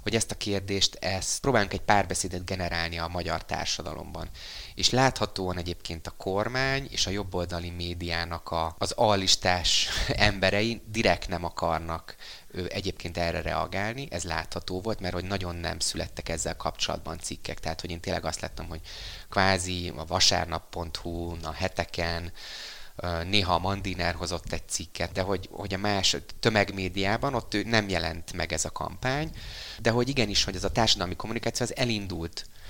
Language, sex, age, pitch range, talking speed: Hungarian, male, 30-49, 85-100 Hz, 145 wpm